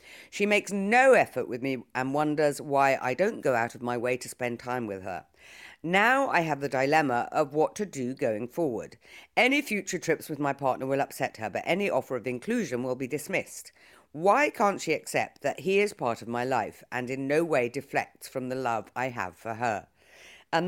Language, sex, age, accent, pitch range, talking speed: English, female, 50-69, British, 130-180 Hz, 210 wpm